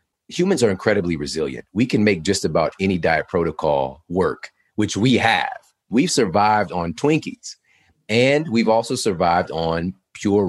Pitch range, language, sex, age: 90-125 Hz, English, male, 40-59